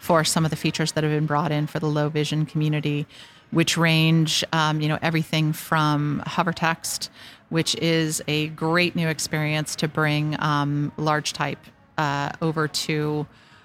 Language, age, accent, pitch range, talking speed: English, 40-59, American, 150-160 Hz, 170 wpm